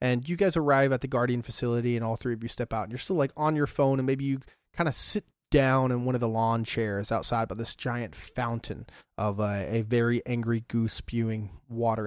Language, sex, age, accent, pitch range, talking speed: English, male, 30-49, American, 115-145 Hz, 240 wpm